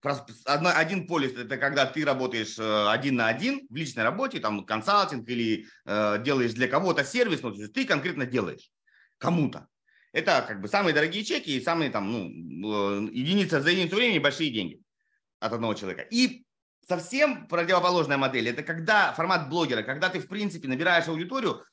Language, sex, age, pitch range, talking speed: Russian, male, 30-49, 135-195 Hz, 155 wpm